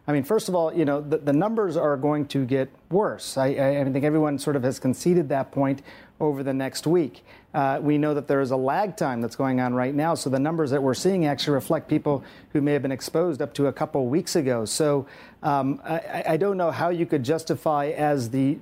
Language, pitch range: English, 140-160 Hz